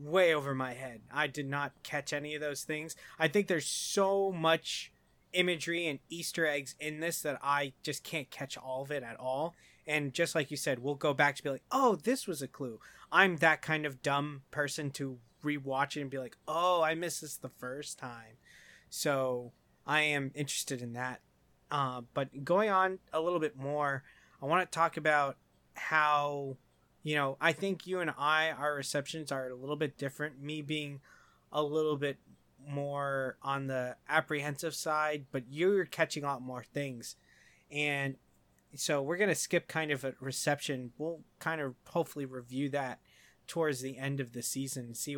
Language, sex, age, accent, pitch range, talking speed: English, male, 20-39, American, 130-155 Hz, 190 wpm